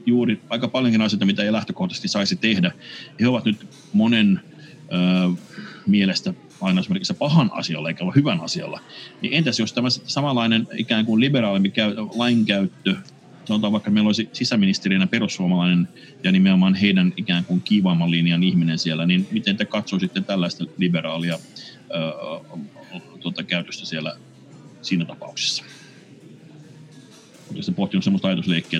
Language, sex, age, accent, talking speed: Finnish, male, 30-49, native, 135 wpm